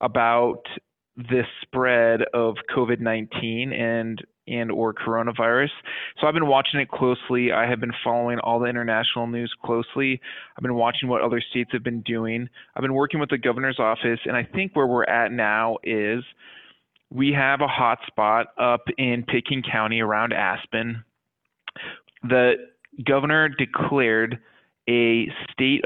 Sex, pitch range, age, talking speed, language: male, 115-130 Hz, 20-39, 145 wpm, English